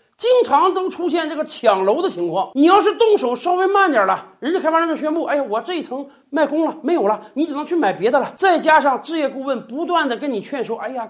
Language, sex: Chinese, male